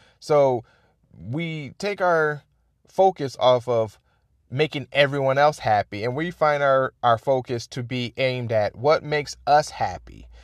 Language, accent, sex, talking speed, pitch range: English, American, male, 145 wpm, 115-145 Hz